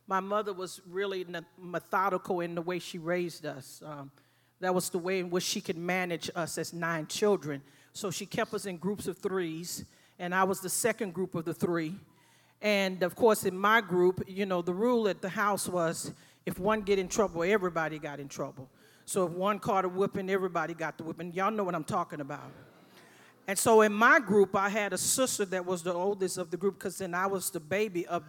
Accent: American